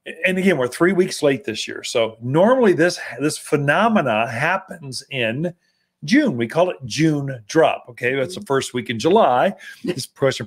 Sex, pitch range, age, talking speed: male, 140-205 Hz, 40-59, 170 wpm